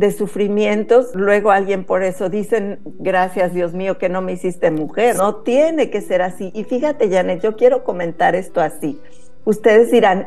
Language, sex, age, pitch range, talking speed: Spanish, female, 50-69, 185-240 Hz, 175 wpm